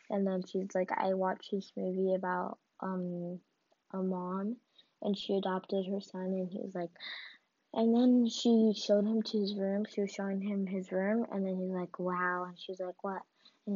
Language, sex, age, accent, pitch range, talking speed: English, female, 20-39, American, 185-210 Hz, 195 wpm